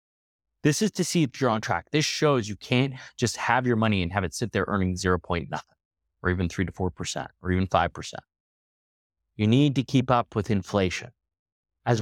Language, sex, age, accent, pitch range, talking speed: English, male, 30-49, American, 95-135 Hz, 195 wpm